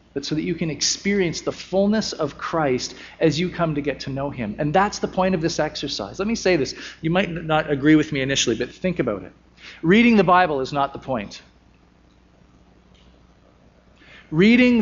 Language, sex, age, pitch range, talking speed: English, male, 40-59, 115-175 Hz, 195 wpm